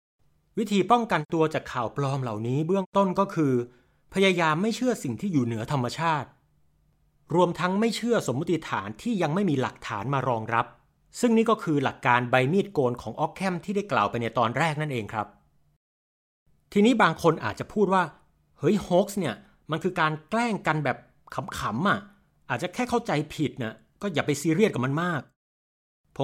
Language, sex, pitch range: Thai, male, 120-175 Hz